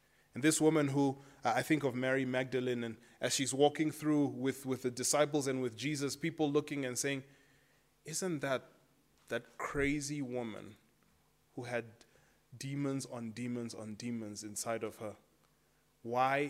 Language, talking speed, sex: English, 150 wpm, male